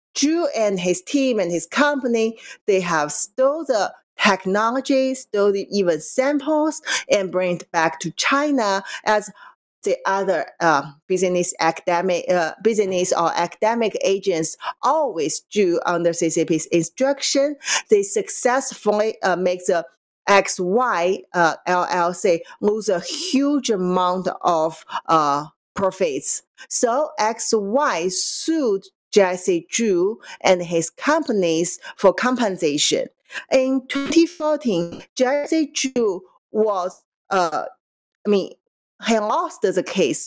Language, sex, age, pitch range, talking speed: English, female, 40-59, 180-265 Hz, 110 wpm